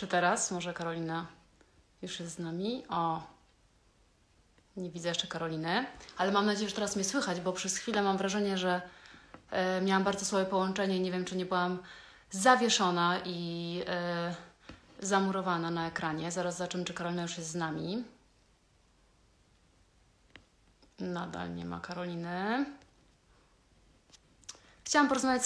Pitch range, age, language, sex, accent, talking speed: 170-200 Hz, 30-49, Polish, female, native, 135 wpm